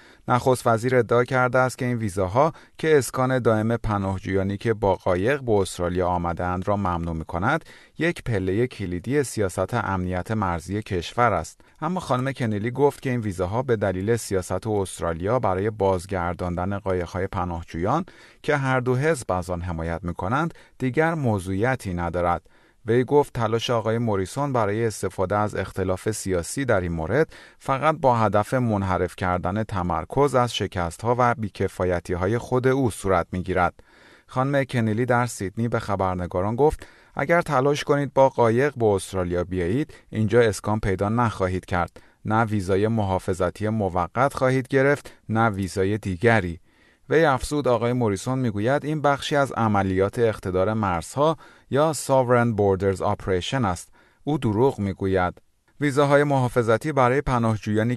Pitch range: 95-125 Hz